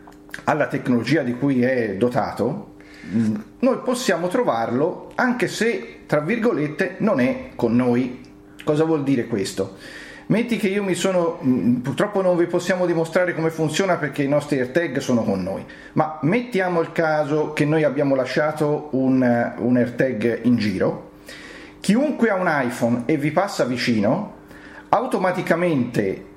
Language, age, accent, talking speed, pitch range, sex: Italian, 40-59, native, 145 wpm, 130-185 Hz, male